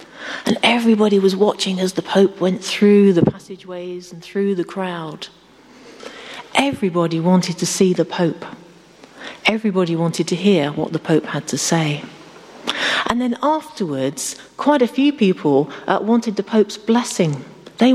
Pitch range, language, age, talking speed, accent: 160-210 Hz, English, 40-59, 145 wpm, British